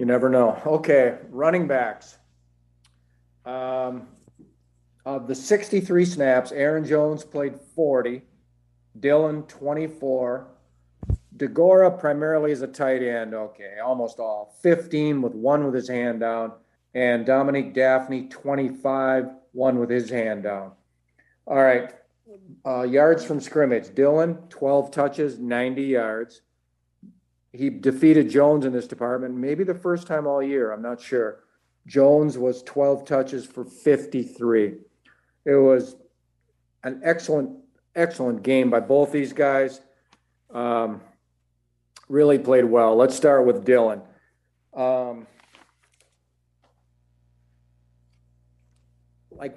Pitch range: 110-140 Hz